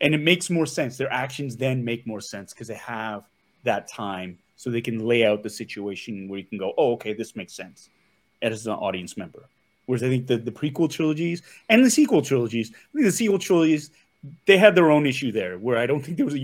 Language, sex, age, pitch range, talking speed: English, male, 30-49, 115-150 Hz, 230 wpm